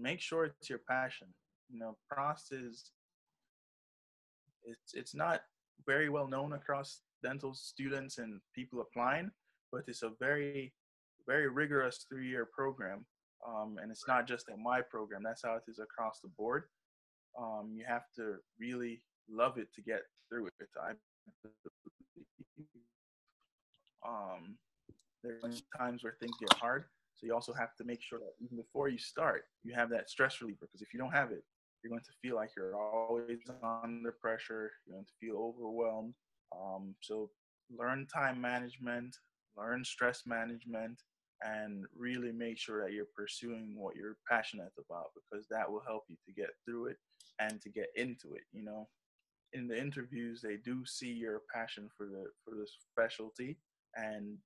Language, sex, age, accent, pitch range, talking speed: English, male, 20-39, American, 110-125 Hz, 160 wpm